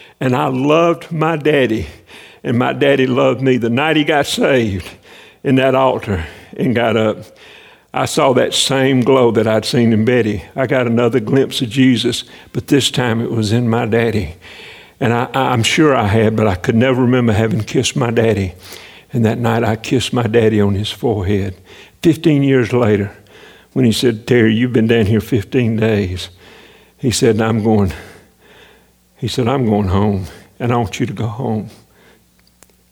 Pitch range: 105-130 Hz